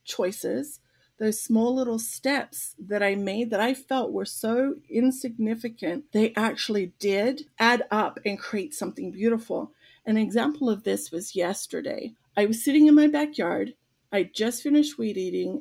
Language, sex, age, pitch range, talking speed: English, female, 40-59, 200-255 Hz, 155 wpm